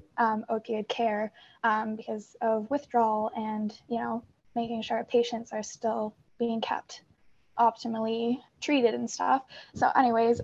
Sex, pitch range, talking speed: female, 225-240 Hz, 130 wpm